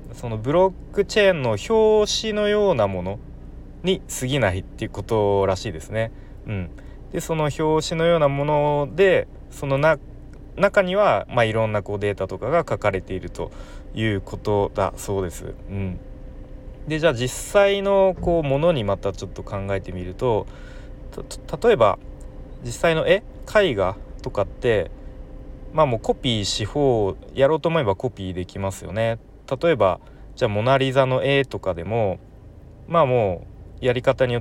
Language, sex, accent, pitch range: Japanese, male, native, 95-155 Hz